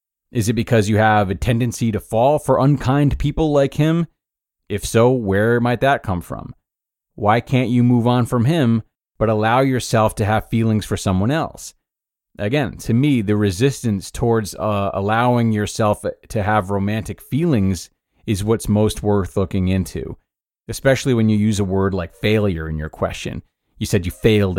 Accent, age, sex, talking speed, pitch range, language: American, 30-49, male, 175 wpm, 95-120 Hz, English